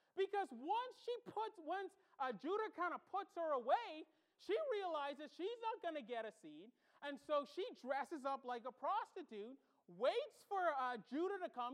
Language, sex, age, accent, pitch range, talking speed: English, male, 30-49, American, 275-385 Hz, 180 wpm